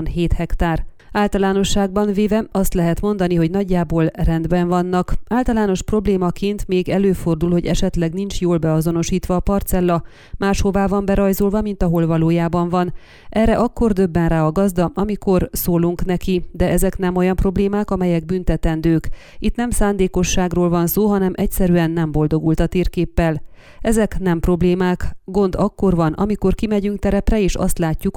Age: 30-49